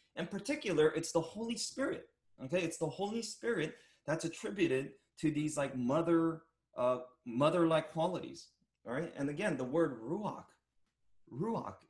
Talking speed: 140 wpm